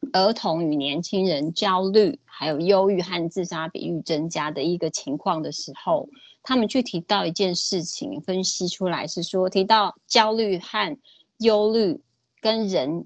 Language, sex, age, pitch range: Chinese, female, 30-49, 165-215 Hz